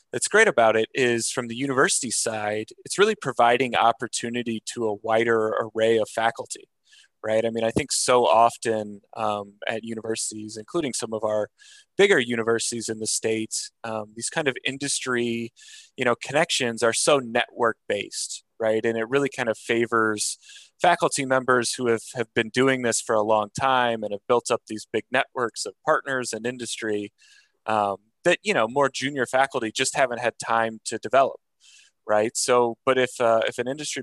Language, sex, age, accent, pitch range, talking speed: English, male, 20-39, American, 110-135 Hz, 175 wpm